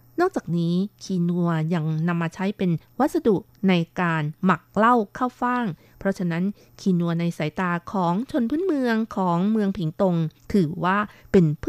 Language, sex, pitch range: Thai, female, 160-200 Hz